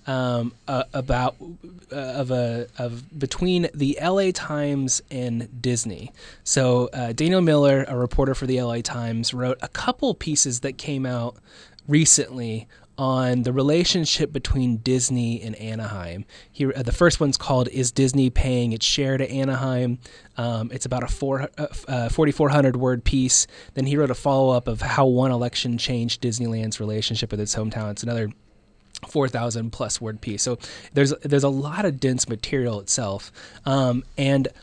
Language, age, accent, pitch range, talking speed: English, 20-39, American, 120-145 Hz, 165 wpm